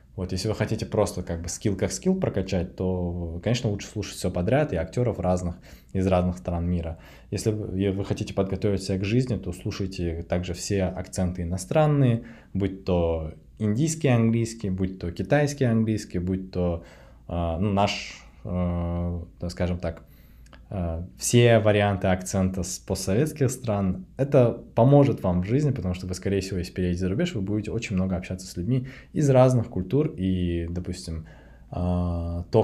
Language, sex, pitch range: Russian, male, 90-110 Hz